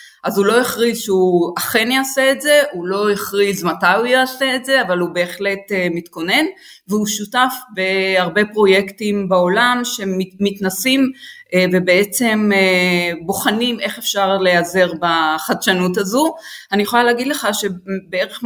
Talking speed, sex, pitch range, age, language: 125 wpm, female, 180-220 Hz, 30-49, Hebrew